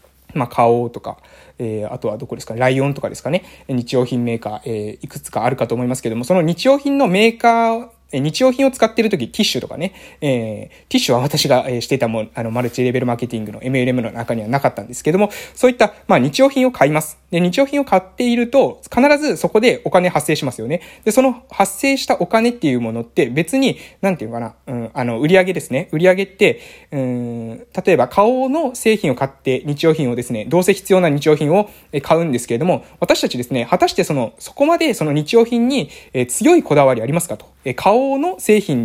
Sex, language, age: male, Japanese, 20-39